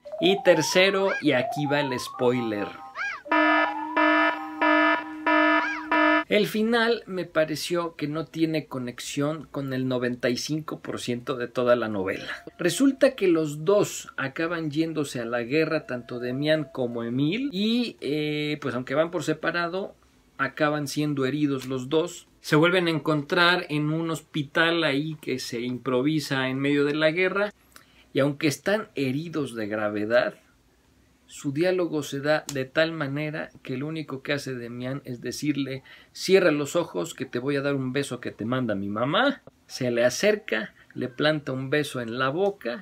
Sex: male